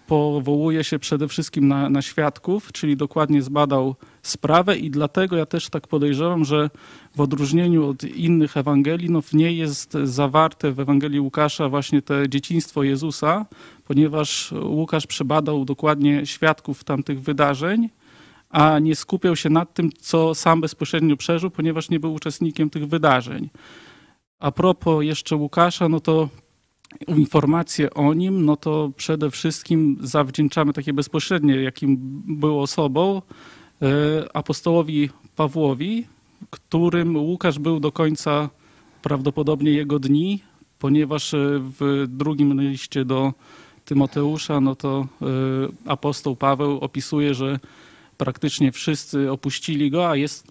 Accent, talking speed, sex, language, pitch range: native, 120 wpm, male, Polish, 140-160 Hz